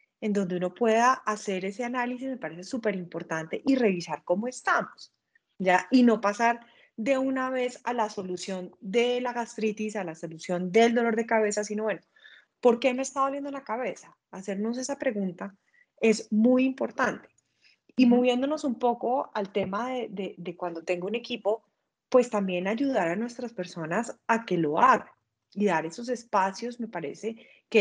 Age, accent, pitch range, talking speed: 30-49, Colombian, 195-245 Hz, 170 wpm